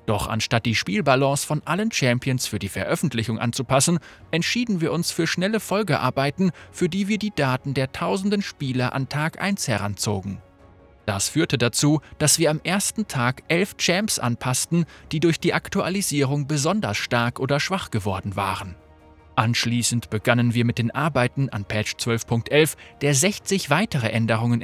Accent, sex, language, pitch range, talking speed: German, male, German, 115-175 Hz, 155 wpm